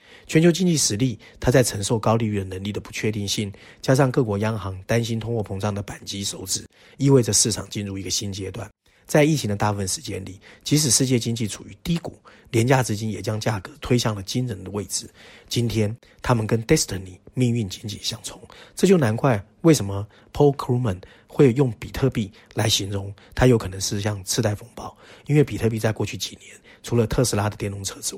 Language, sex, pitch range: Chinese, male, 100-125 Hz